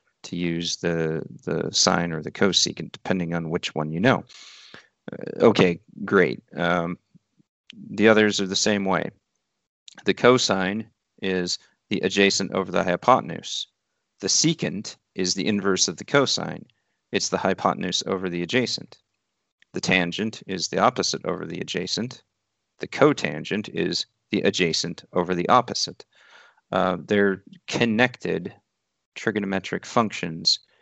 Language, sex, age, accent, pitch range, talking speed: English, male, 40-59, American, 90-110 Hz, 130 wpm